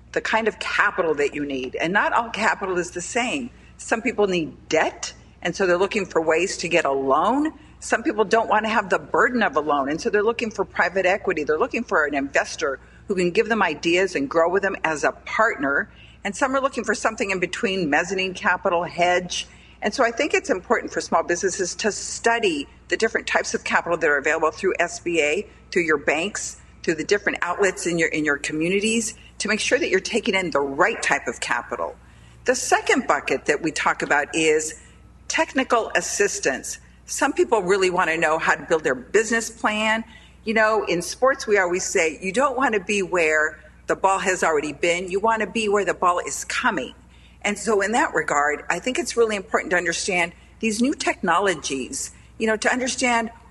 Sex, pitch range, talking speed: female, 175-230 Hz, 205 wpm